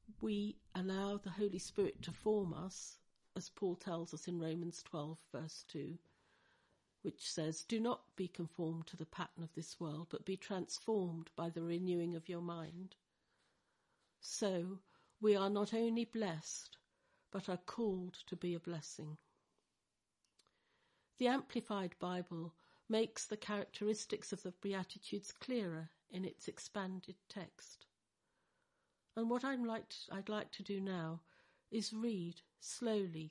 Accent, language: British, English